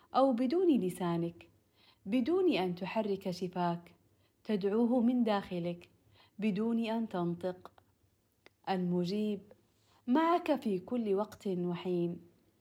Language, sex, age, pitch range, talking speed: Arabic, female, 40-59, 175-215 Hz, 90 wpm